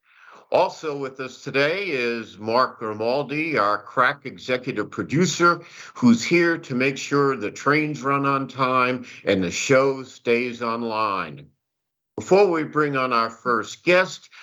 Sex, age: male, 60-79